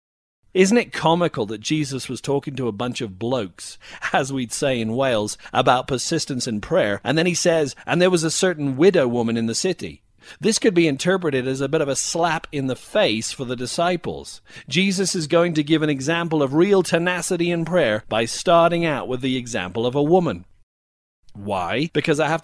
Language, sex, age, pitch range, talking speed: English, male, 40-59, 125-170 Hz, 205 wpm